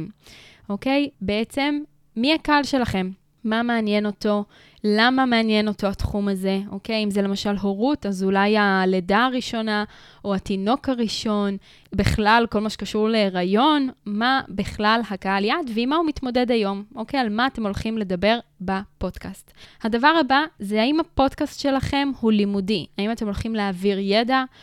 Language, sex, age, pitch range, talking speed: Hebrew, female, 10-29, 200-240 Hz, 150 wpm